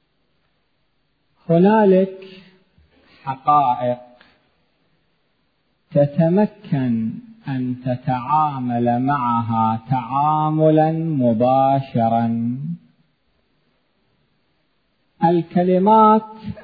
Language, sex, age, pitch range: Arabic, male, 50-69, 130-180 Hz